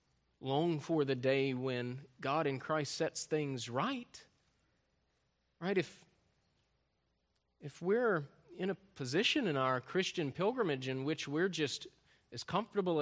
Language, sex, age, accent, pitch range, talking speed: English, male, 30-49, American, 130-190 Hz, 130 wpm